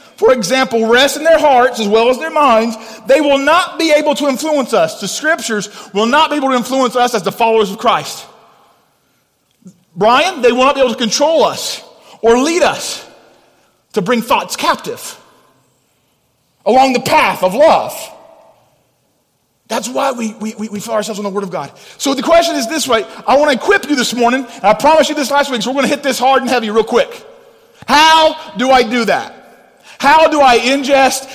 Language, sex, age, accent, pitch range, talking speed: English, male, 40-59, American, 225-280 Hz, 205 wpm